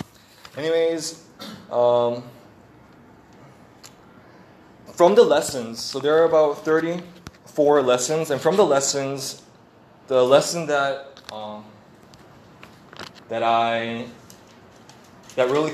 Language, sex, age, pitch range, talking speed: English, male, 20-39, 120-155 Hz, 90 wpm